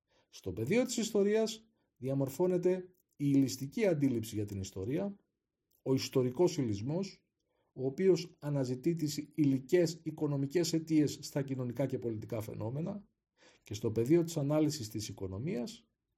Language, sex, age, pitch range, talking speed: Greek, male, 40-59, 125-175 Hz, 120 wpm